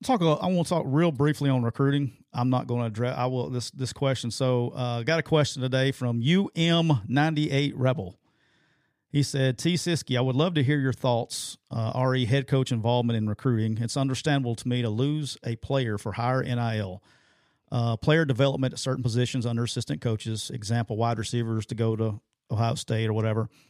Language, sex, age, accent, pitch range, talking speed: English, male, 40-59, American, 115-140 Hz, 205 wpm